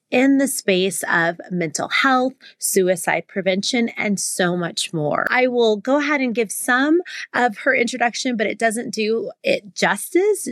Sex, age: female, 30-49